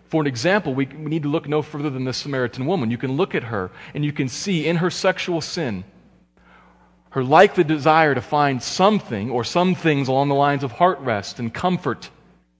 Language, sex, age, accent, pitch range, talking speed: English, male, 40-59, American, 90-140 Hz, 205 wpm